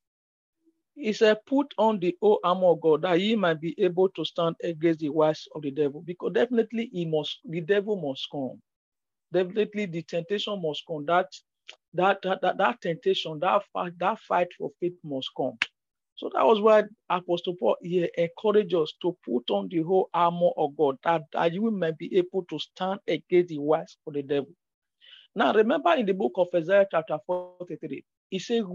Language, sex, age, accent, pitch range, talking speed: English, male, 50-69, Nigerian, 170-210 Hz, 190 wpm